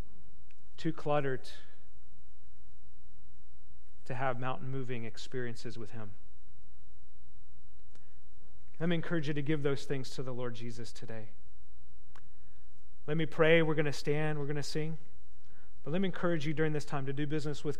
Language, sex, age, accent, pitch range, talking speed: English, male, 40-59, American, 115-180 Hz, 150 wpm